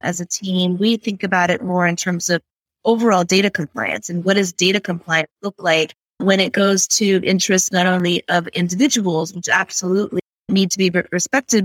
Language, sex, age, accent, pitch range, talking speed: English, female, 30-49, American, 175-205 Hz, 185 wpm